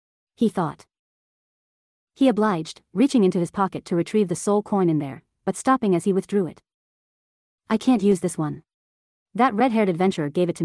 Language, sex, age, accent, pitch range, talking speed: English, female, 30-49, American, 170-210 Hz, 180 wpm